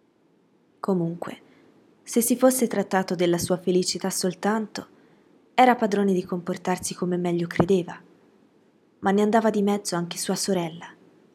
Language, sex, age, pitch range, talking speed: Italian, female, 20-39, 175-210 Hz, 125 wpm